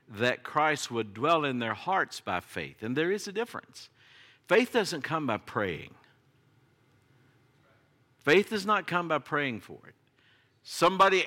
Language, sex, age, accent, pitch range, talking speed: English, male, 50-69, American, 120-180 Hz, 150 wpm